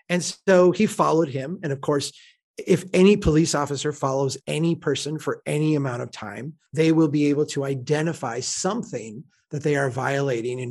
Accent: American